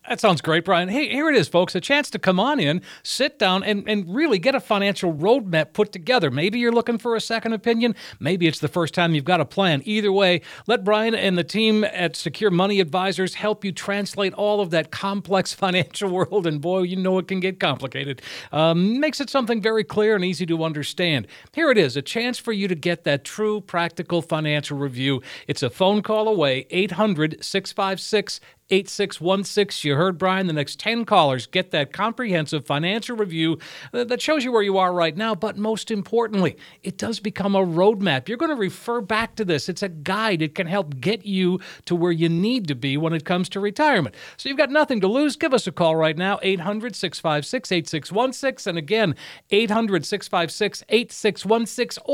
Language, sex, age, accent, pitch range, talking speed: English, male, 50-69, American, 170-220 Hz, 200 wpm